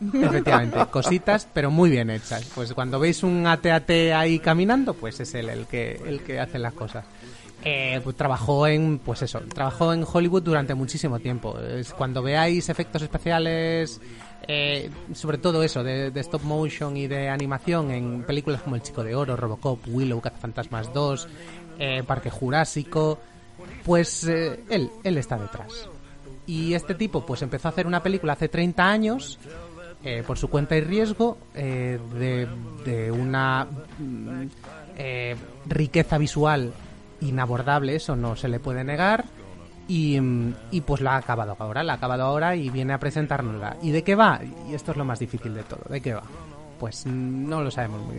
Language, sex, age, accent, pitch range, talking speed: Spanish, male, 30-49, Spanish, 125-165 Hz, 175 wpm